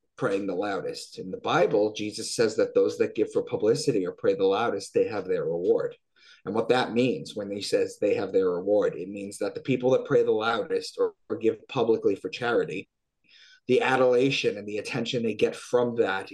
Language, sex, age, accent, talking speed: English, male, 30-49, American, 210 wpm